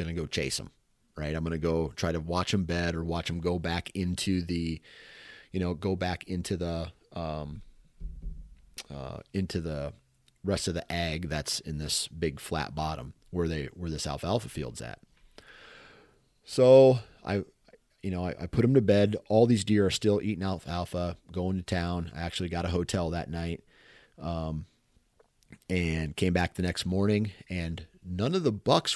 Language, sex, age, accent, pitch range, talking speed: English, male, 30-49, American, 85-100 Hz, 180 wpm